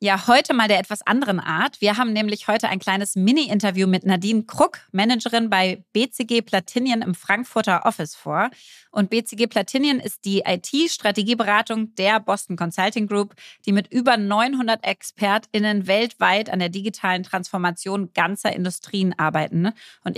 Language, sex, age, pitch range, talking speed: German, female, 30-49, 190-230 Hz, 145 wpm